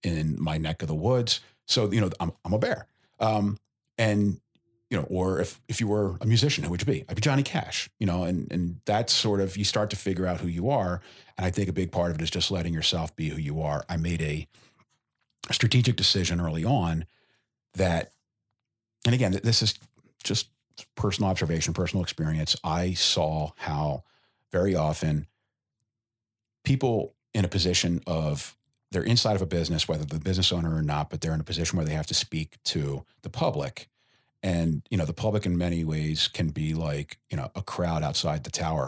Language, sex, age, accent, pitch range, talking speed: English, male, 40-59, American, 80-115 Hz, 205 wpm